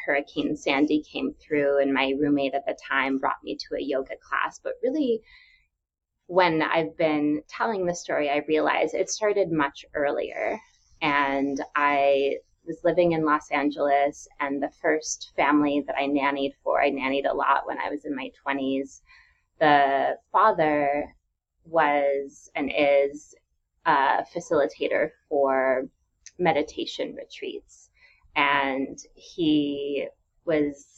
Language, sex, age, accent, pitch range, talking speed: English, female, 20-39, American, 140-160 Hz, 130 wpm